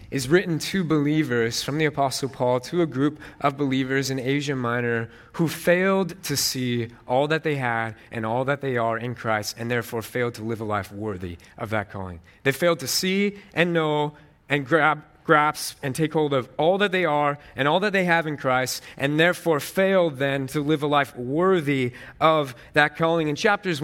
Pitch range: 130-165 Hz